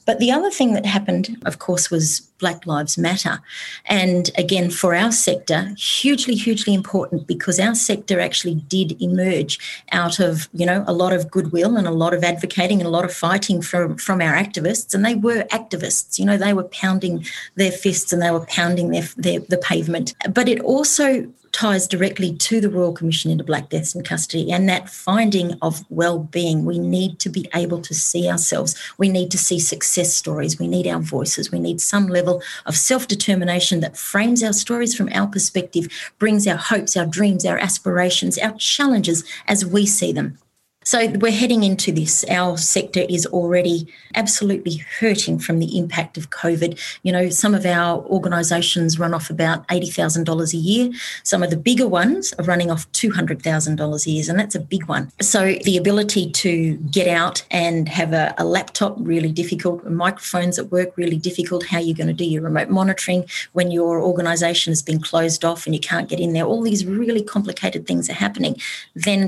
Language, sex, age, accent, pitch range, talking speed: English, female, 30-49, Australian, 170-200 Hz, 190 wpm